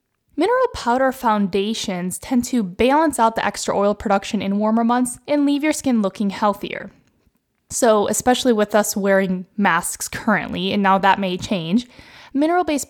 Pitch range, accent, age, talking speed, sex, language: 200-250 Hz, American, 10-29, 155 wpm, female, English